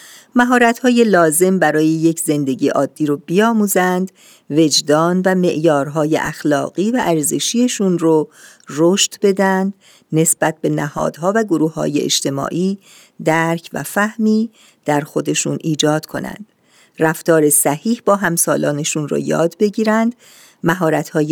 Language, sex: Persian, female